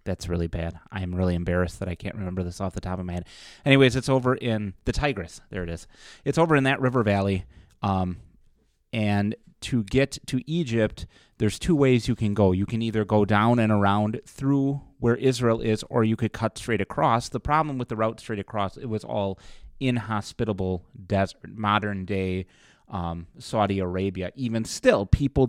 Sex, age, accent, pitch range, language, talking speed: male, 30-49, American, 95-115 Hz, English, 190 wpm